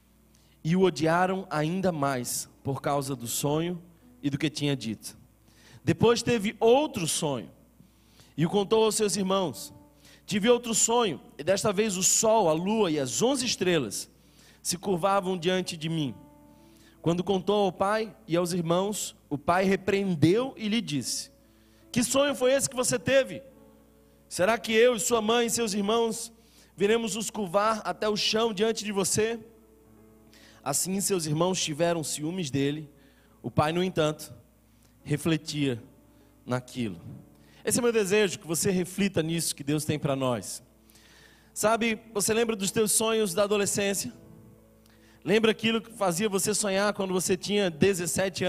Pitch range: 145-210 Hz